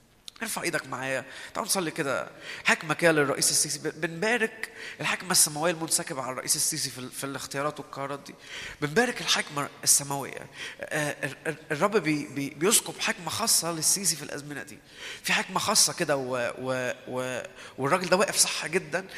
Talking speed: 130 wpm